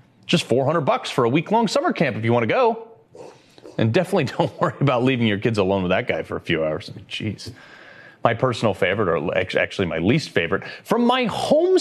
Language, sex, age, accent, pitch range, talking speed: English, male, 30-49, American, 145-230 Hz, 225 wpm